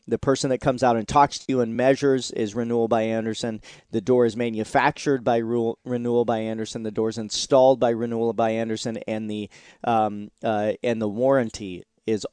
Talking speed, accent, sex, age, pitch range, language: 195 wpm, American, male, 40-59, 110-125 Hz, English